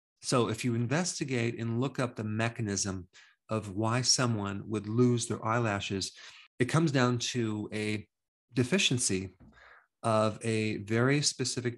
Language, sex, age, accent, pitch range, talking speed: English, male, 40-59, American, 105-125 Hz, 130 wpm